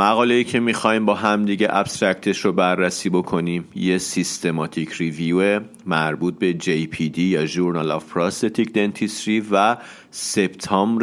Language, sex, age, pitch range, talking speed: Persian, male, 40-59, 85-110 Hz, 135 wpm